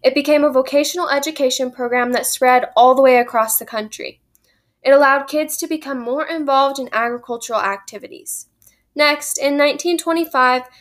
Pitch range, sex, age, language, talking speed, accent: 240-295 Hz, female, 10-29, English, 150 wpm, American